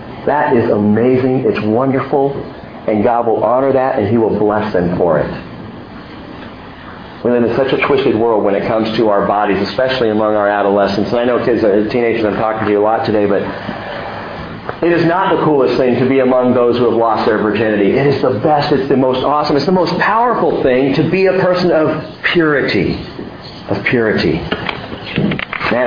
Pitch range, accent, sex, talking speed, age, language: 115-175 Hz, American, male, 195 wpm, 50-69, English